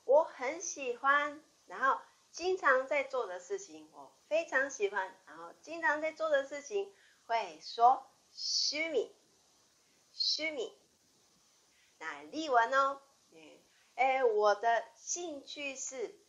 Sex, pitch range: female, 240-355 Hz